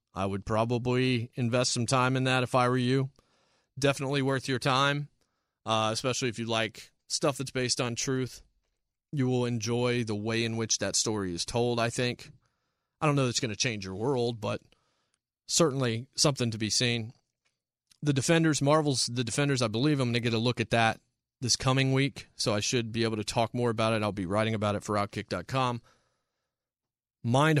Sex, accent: male, American